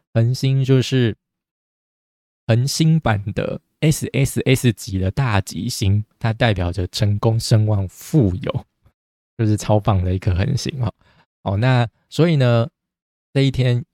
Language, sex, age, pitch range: Chinese, male, 20-39, 100-130 Hz